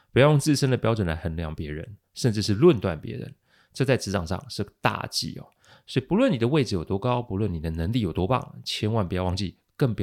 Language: Chinese